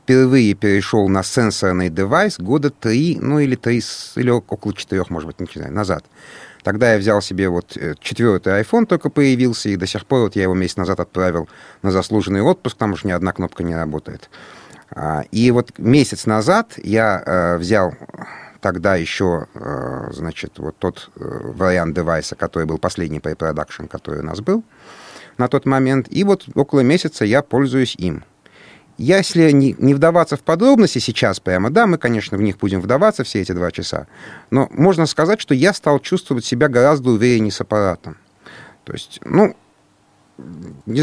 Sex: male